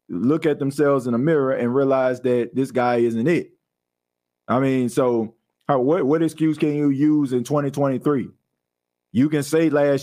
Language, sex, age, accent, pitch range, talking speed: English, male, 40-59, American, 120-140 Hz, 160 wpm